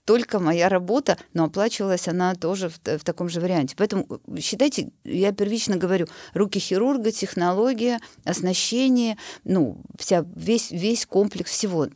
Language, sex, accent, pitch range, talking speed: Russian, female, native, 150-195 Hz, 135 wpm